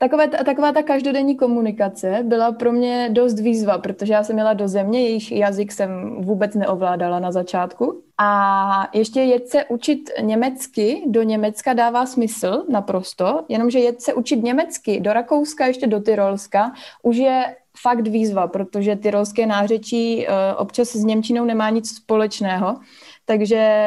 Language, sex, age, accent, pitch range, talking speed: Czech, female, 20-39, native, 195-235 Hz, 140 wpm